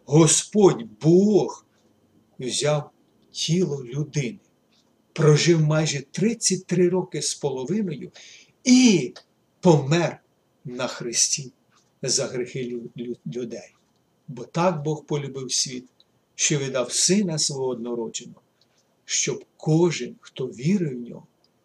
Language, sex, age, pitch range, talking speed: Ukrainian, male, 50-69, 130-190 Hz, 95 wpm